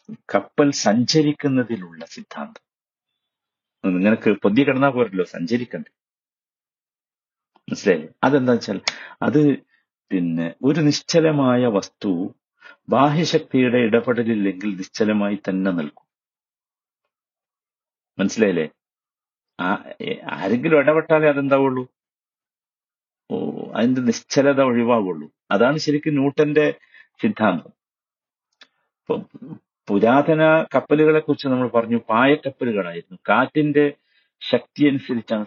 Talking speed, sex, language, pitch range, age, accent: 75 wpm, male, Malayalam, 120-150 Hz, 50-69, native